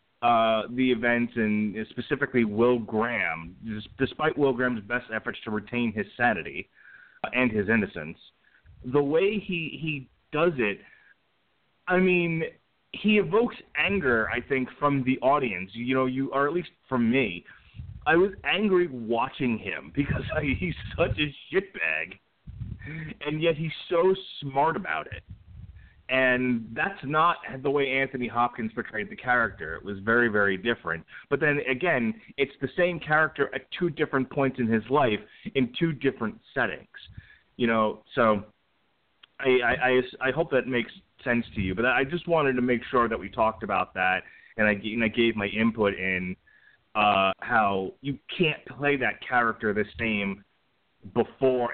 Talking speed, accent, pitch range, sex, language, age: 160 wpm, American, 110-145 Hz, male, English, 30-49